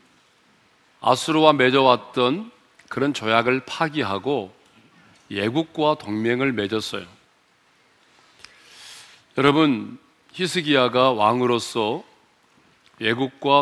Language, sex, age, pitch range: Korean, male, 40-59, 115-155 Hz